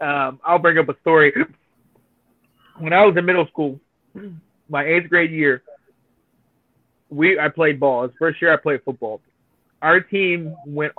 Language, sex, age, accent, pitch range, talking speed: English, male, 30-49, American, 140-170 Hz, 170 wpm